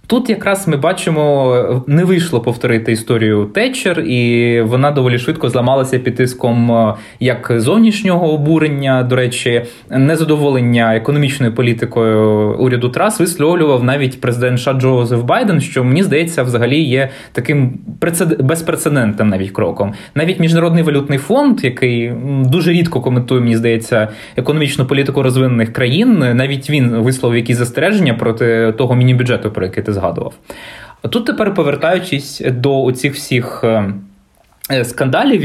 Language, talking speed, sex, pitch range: Ukrainian, 120 wpm, male, 115-145 Hz